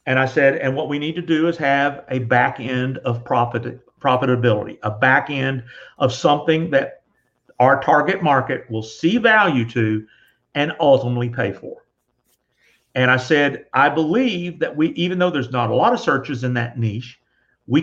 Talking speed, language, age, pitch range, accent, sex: 180 wpm, English, 50-69, 125-160 Hz, American, male